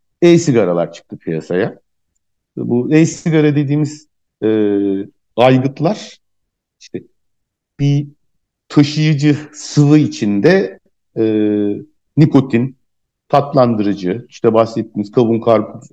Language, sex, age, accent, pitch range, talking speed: Turkish, male, 60-79, native, 110-145 Hz, 70 wpm